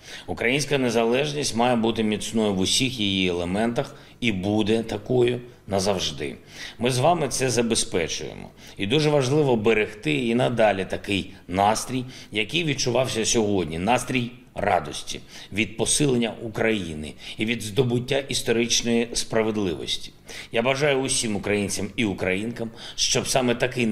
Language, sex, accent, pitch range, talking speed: Ukrainian, male, native, 100-125 Hz, 120 wpm